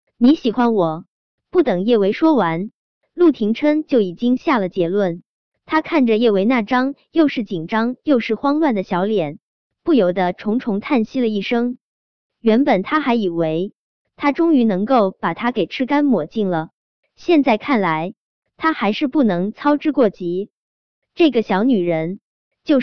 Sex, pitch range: male, 195-280 Hz